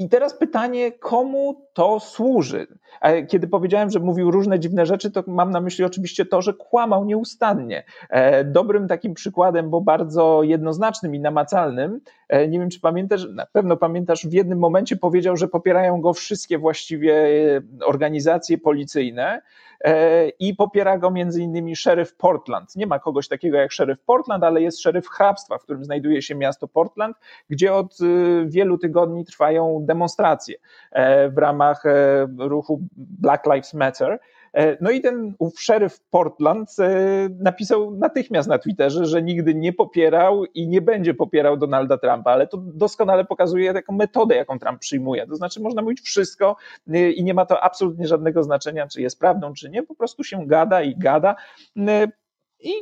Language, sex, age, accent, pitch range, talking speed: Polish, male, 40-59, native, 160-200 Hz, 155 wpm